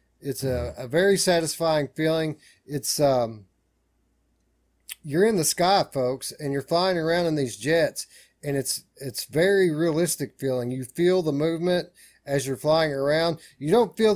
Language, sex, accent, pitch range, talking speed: English, male, American, 130-160 Hz, 155 wpm